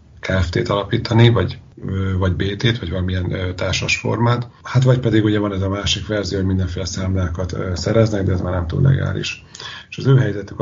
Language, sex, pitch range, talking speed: Hungarian, male, 90-115 Hz, 175 wpm